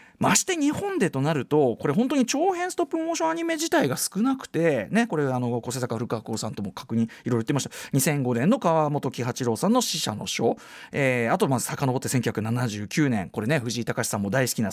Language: Japanese